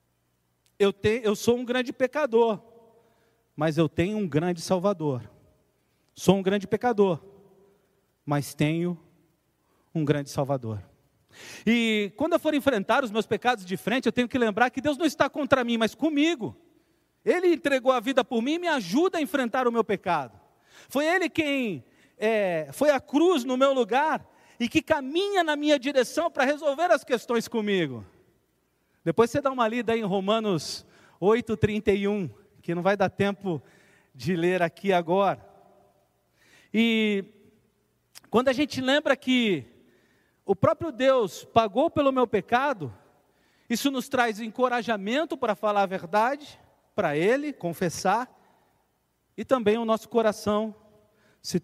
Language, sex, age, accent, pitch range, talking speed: Portuguese, male, 40-59, Brazilian, 175-260 Hz, 145 wpm